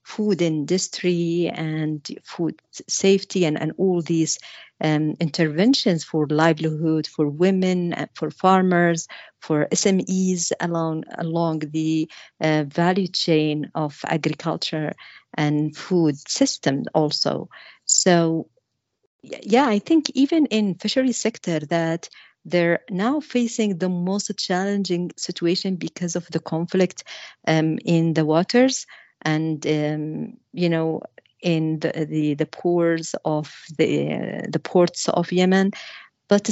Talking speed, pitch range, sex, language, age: 120 wpm, 160-205 Hz, female, English, 50-69